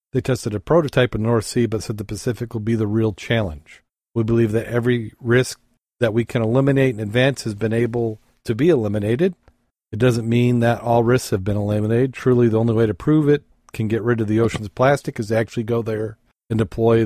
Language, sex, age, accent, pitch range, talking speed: English, male, 40-59, American, 105-120 Hz, 225 wpm